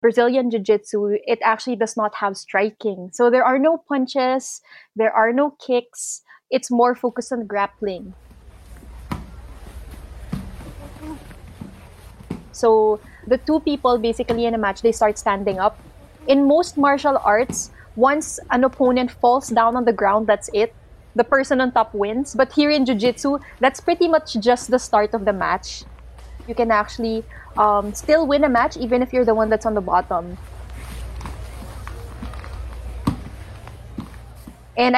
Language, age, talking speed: Filipino, 20-39, 145 wpm